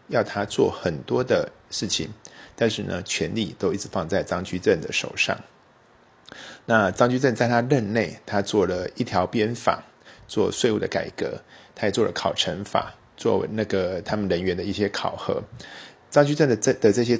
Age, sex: 50-69, male